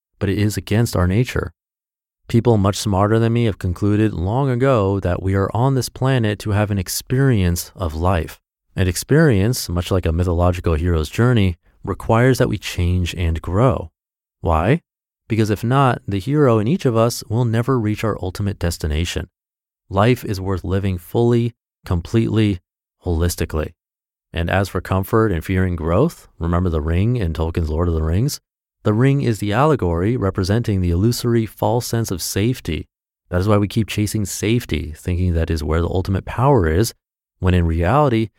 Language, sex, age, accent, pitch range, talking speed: English, male, 30-49, American, 85-115 Hz, 170 wpm